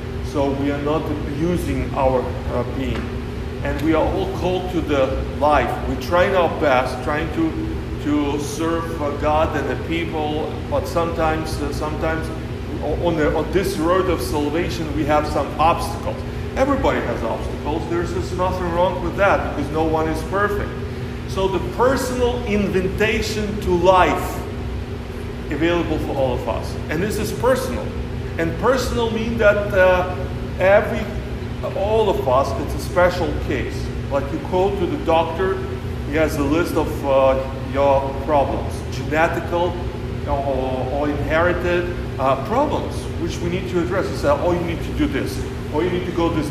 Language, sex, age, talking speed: Ukrainian, male, 40-59, 165 wpm